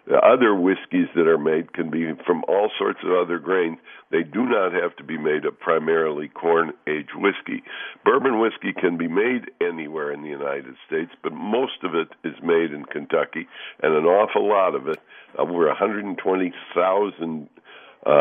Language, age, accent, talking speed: English, 60-79, American, 170 wpm